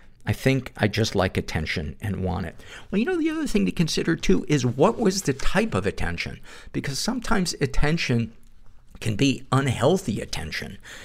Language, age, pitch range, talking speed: English, 50-69, 95-120 Hz, 175 wpm